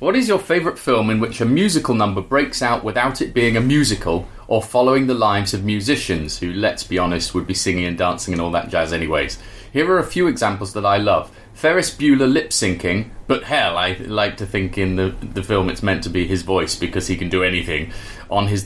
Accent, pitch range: British, 95-135 Hz